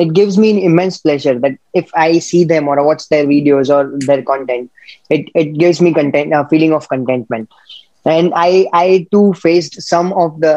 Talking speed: 200 wpm